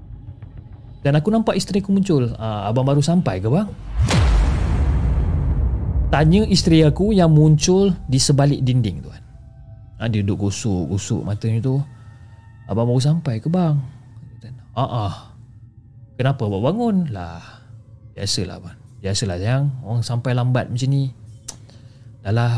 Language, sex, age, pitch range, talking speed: Malay, male, 30-49, 110-155 Hz, 120 wpm